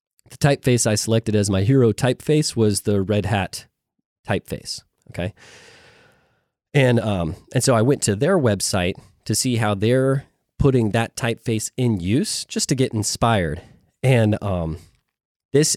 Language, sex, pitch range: English, male, 105-135 Hz